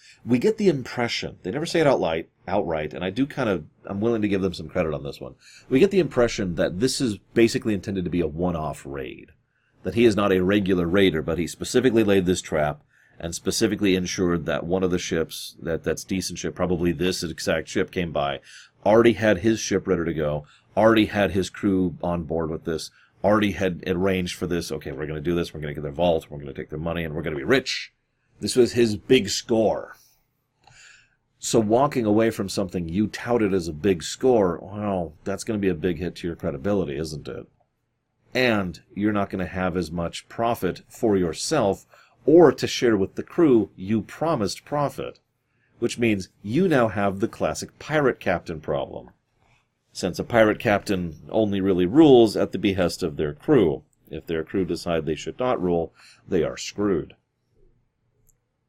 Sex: male